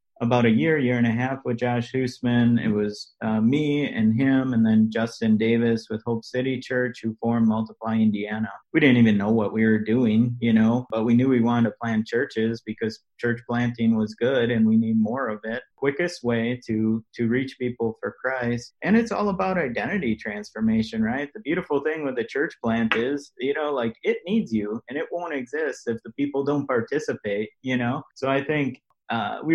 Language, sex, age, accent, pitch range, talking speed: English, male, 30-49, American, 110-135 Hz, 205 wpm